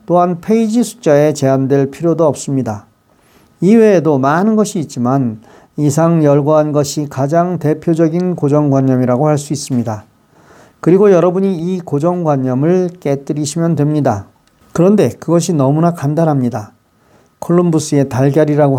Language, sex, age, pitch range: Korean, male, 40-59, 135-175 Hz